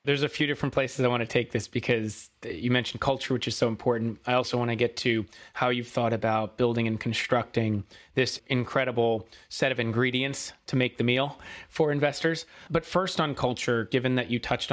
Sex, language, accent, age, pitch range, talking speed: male, English, American, 30-49, 110-130 Hz, 205 wpm